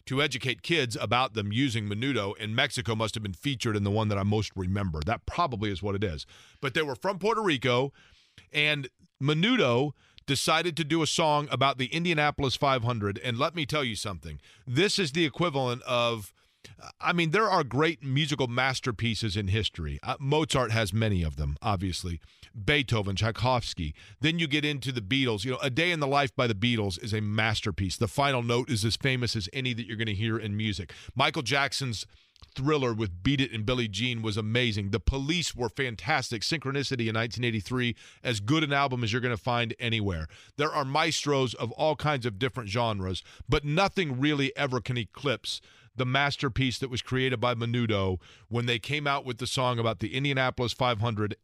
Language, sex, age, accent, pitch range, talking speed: English, male, 40-59, American, 110-145 Hz, 195 wpm